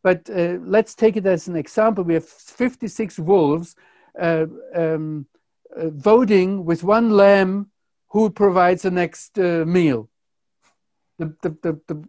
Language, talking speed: English, 130 wpm